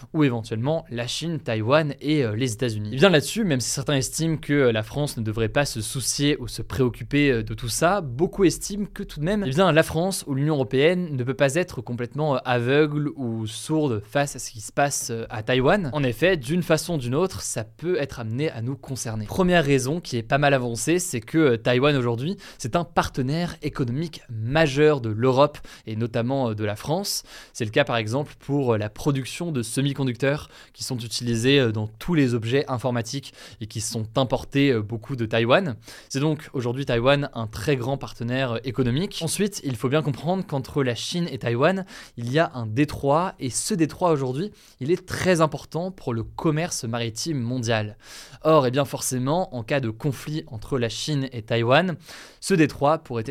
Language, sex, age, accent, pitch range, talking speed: French, male, 20-39, French, 120-155 Hz, 205 wpm